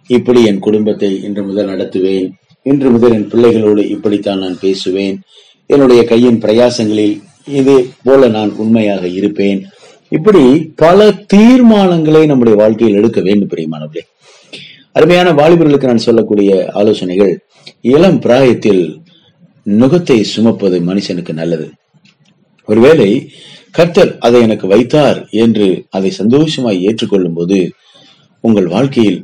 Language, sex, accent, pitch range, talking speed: Tamil, male, native, 100-140 Hz, 105 wpm